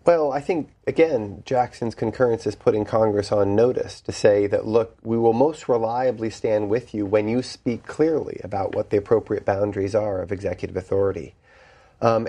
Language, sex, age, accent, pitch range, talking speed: English, male, 40-59, American, 105-125 Hz, 175 wpm